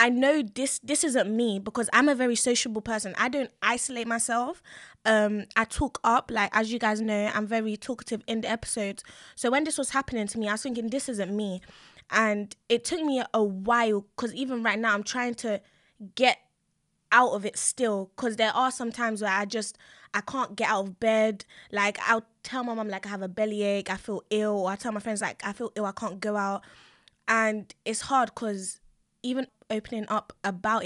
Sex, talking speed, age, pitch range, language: female, 215 wpm, 20-39, 205-235 Hz, English